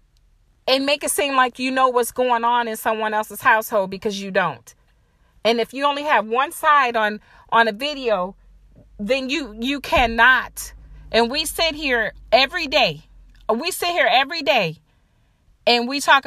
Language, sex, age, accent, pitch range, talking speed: English, female, 40-59, American, 225-285 Hz, 170 wpm